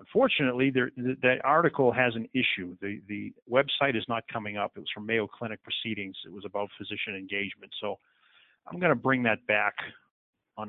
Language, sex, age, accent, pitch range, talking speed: English, male, 40-59, American, 110-125 Hz, 190 wpm